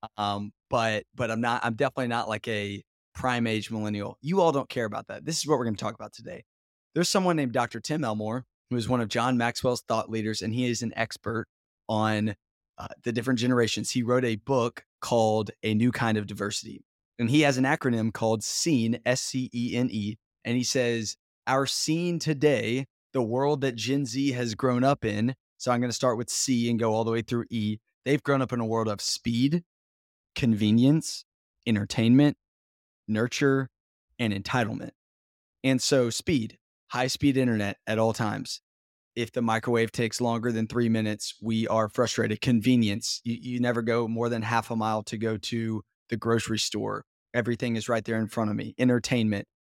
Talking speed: 195 wpm